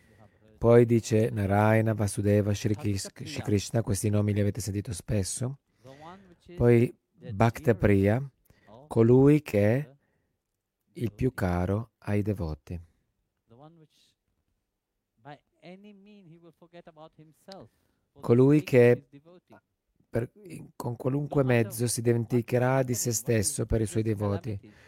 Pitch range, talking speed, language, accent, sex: 105-135 Hz, 95 wpm, Italian, native, male